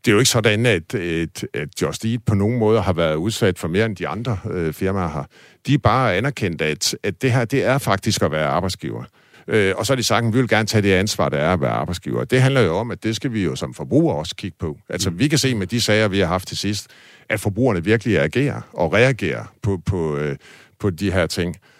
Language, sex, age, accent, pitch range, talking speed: Danish, male, 50-69, native, 95-120 Hz, 250 wpm